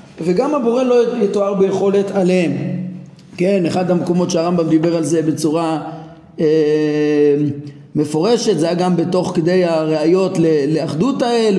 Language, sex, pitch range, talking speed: Hebrew, male, 170-220 Hz, 125 wpm